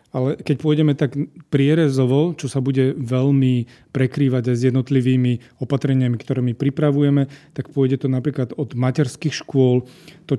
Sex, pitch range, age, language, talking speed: male, 120-135 Hz, 30-49, Slovak, 145 wpm